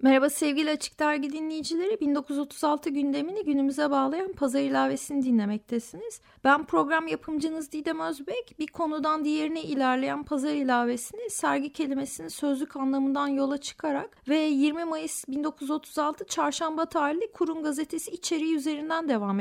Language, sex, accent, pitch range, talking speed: Turkish, female, native, 295-370 Hz, 125 wpm